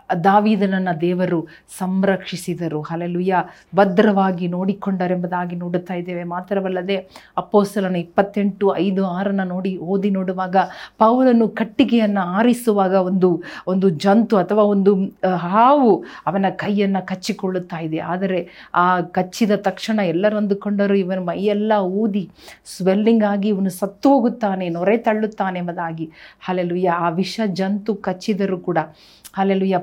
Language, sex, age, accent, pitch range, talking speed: Kannada, female, 40-59, native, 180-205 Hz, 105 wpm